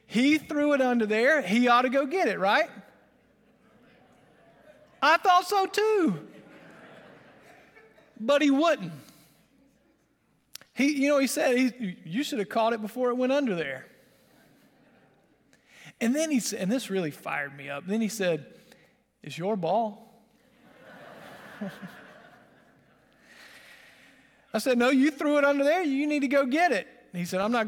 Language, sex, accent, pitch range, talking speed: English, male, American, 195-260 Hz, 145 wpm